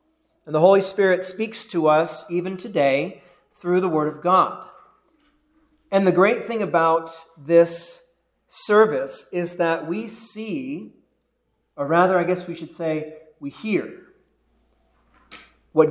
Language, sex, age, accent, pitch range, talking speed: English, male, 40-59, American, 155-190 Hz, 130 wpm